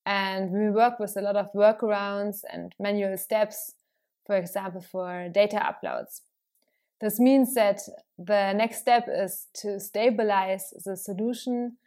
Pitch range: 195-230 Hz